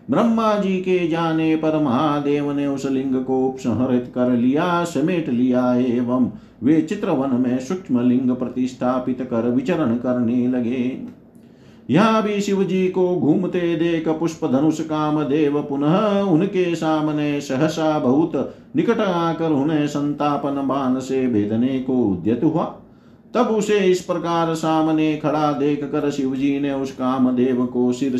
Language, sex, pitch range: Hindi, male, 130-170 Hz